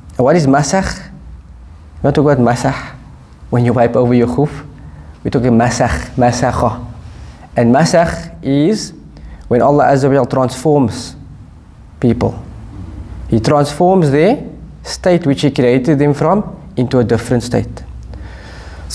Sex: male